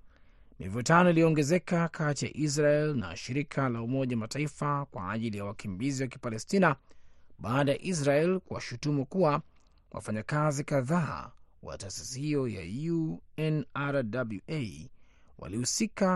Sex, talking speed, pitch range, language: male, 110 wpm, 105-155 Hz, Swahili